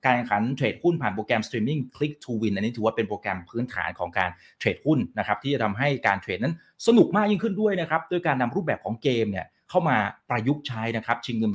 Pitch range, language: 110-170 Hz, Thai